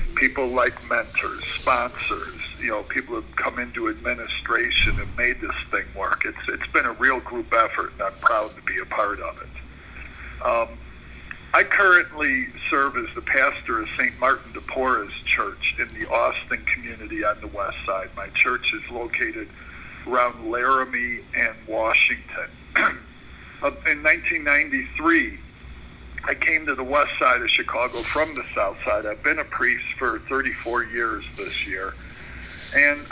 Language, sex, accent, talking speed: English, male, American, 155 wpm